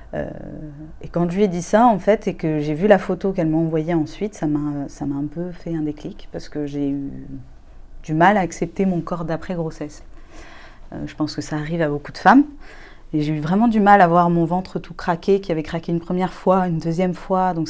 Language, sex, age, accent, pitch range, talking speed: French, female, 30-49, French, 155-190 Hz, 235 wpm